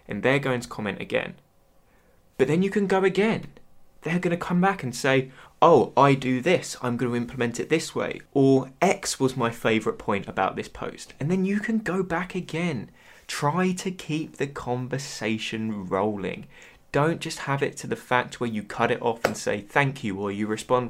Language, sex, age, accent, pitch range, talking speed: English, male, 20-39, British, 120-150 Hz, 200 wpm